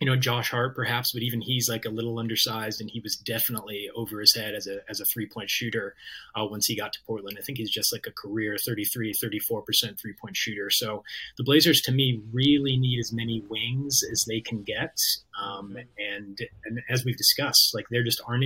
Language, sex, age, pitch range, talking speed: English, male, 30-49, 110-130 Hz, 220 wpm